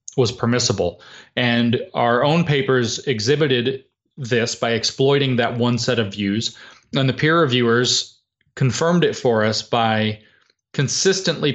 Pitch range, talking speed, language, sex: 115-130 Hz, 130 wpm, English, male